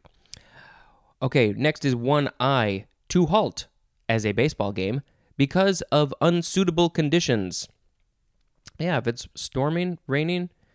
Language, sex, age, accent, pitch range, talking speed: English, male, 20-39, American, 120-160 Hz, 105 wpm